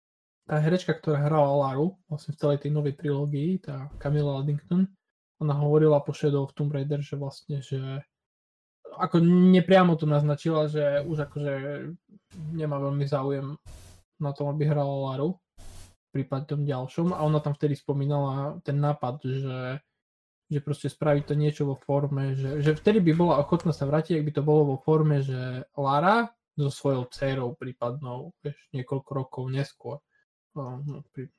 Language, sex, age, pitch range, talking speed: Slovak, male, 20-39, 135-155 Hz, 155 wpm